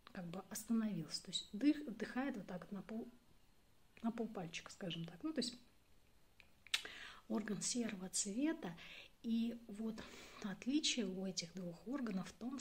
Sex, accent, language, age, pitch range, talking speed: female, native, Russian, 30-49, 185-230 Hz, 150 wpm